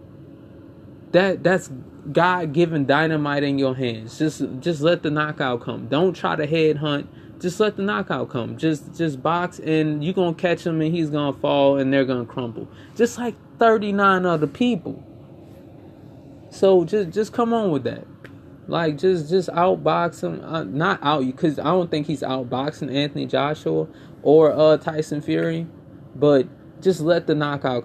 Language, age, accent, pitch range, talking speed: English, 20-39, American, 135-170 Hz, 165 wpm